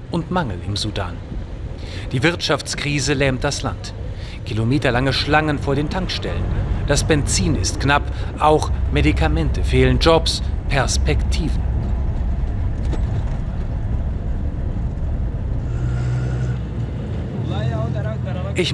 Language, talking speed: German, 75 wpm